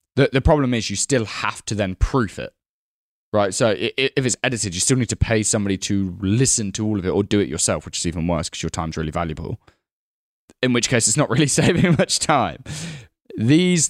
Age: 10-29